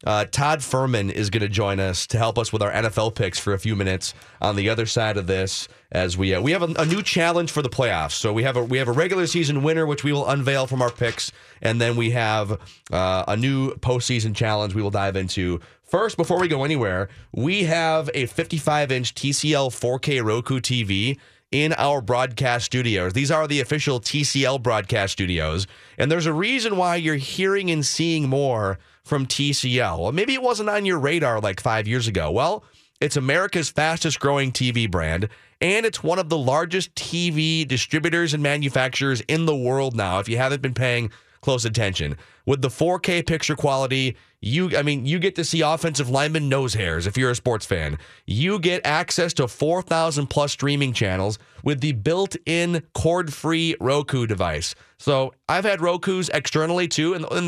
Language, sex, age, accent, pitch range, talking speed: English, male, 30-49, American, 110-155 Hz, 190 wpm